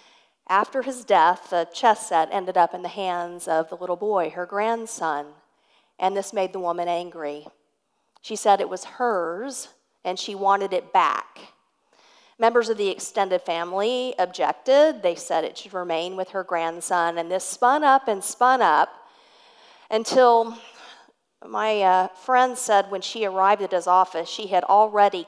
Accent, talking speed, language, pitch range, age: American, 160 wpm, English, 185-250 Hz, 50-69